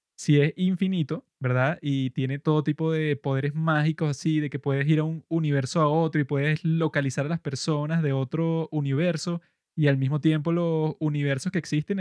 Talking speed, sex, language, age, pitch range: 190 wpm, male, Spanish, 20-39, 140-170 Hz